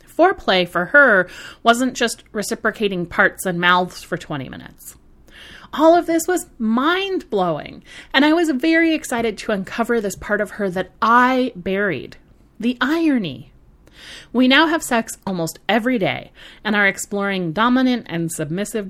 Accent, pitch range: American, 185-275 Hz